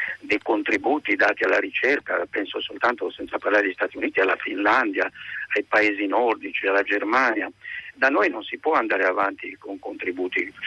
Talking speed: 155 wpm